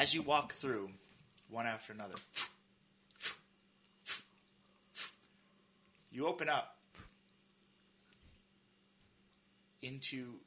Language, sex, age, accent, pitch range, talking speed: English, male, 30-49, American, 135-195 Hz, 65 wpm